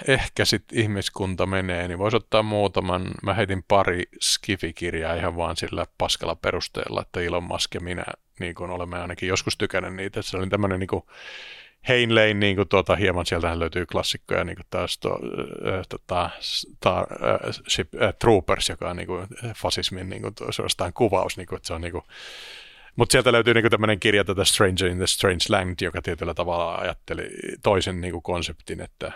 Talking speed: 165 wpm